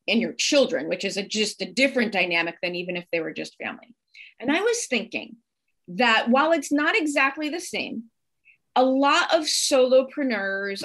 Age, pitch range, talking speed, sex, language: 30-49, 200-275 Hz, 170 wpm, female, English